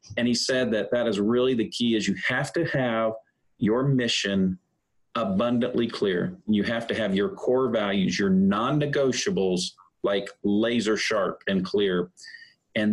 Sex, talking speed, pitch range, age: male, 155 wpm, 100-130 Hz, 40-59